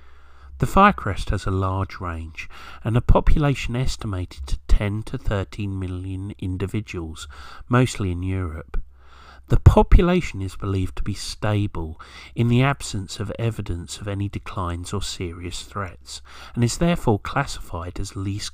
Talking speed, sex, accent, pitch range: 140 wpm, male, British, 85-110 Hz